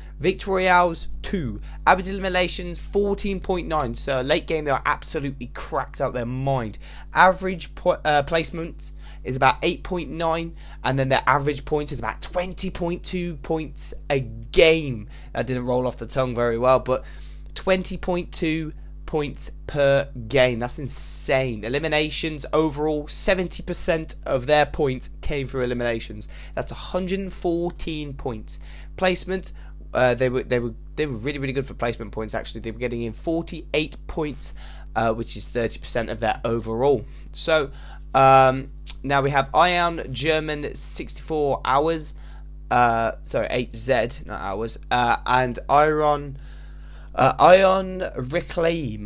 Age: 20-39